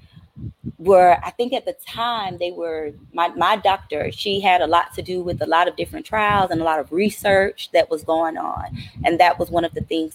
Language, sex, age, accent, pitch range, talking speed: English, female, 20-39, American, 165-235 Hz, 230 wpm